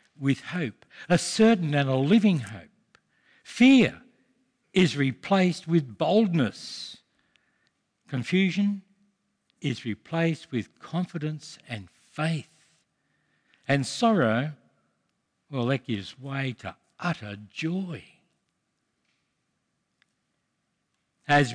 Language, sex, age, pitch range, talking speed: English, male, 60-79, 115-175 Hz, 85 wpm